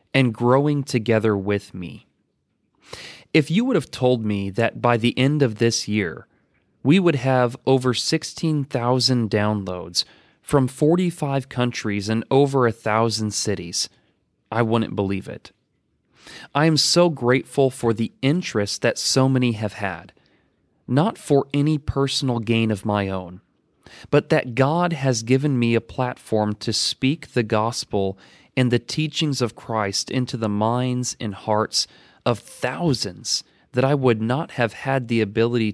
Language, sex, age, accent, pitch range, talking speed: English, male, 30-49, American, 105-135 Hz, 150 wpm